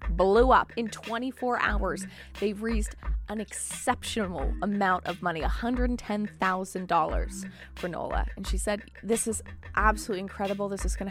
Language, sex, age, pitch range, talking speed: English, female, 20-39, 200-240 Hz, 135 wpm